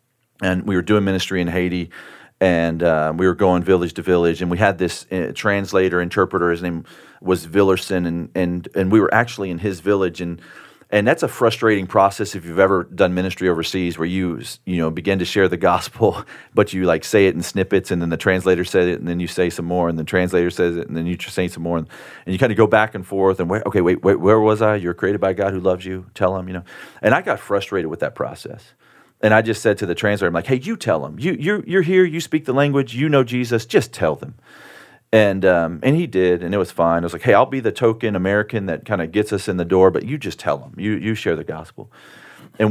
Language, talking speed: English, 260 wpm